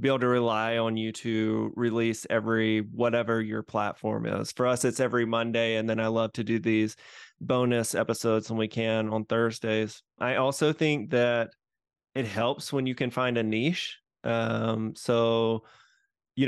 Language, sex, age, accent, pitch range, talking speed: English, male, 20-39, American, 115-145 Hz, 170 wpm